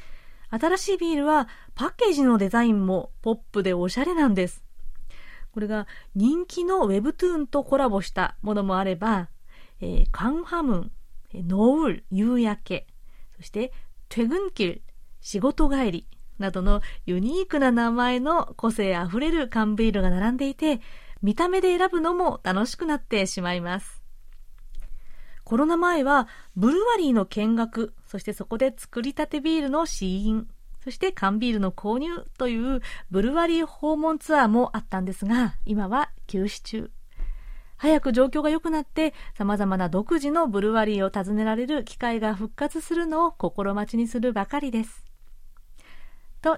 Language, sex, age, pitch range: Japanese, female, 30-49, 205-305 Hz